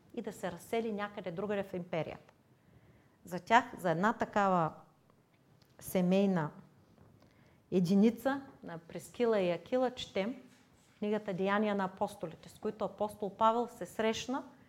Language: Bulgarian